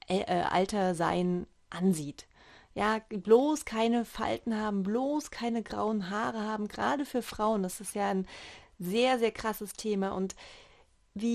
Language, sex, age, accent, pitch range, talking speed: German, female, 30-49, German, 195-235 Hz, 140 wpm